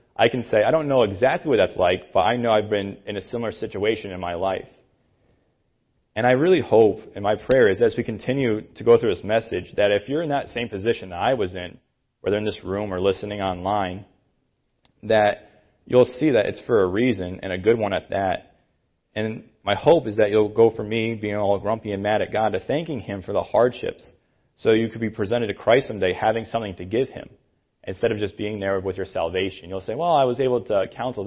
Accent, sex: American, male